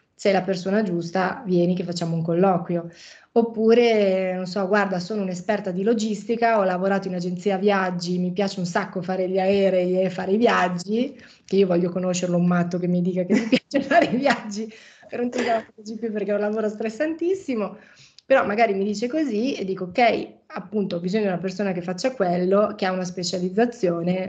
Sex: female